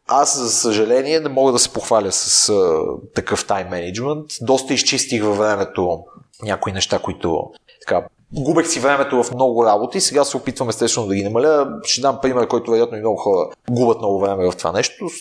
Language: Bulgarian